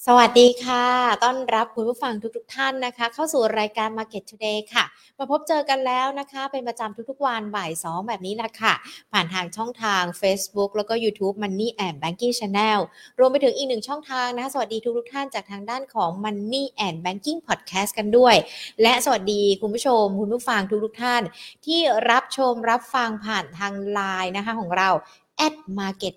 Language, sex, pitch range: Thai, female, 200-255 Hz